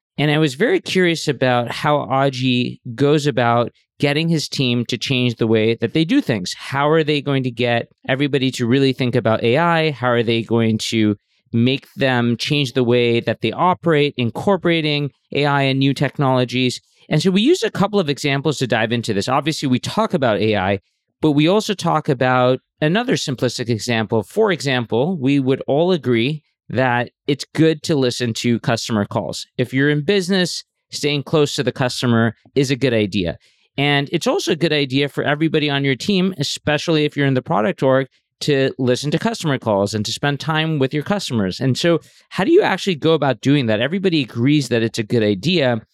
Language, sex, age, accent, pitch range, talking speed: English, male, 40-59, American, 120-155 Hz, 195 wpm